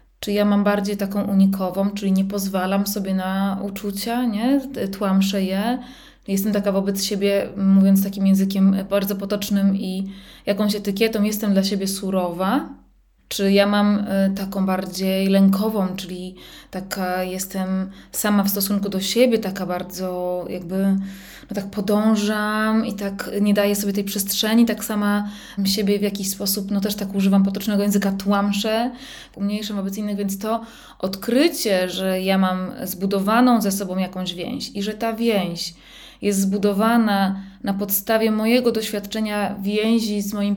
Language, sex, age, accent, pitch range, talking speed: Polish, female, 20-39, native, 195-215 Hz, 145 wpm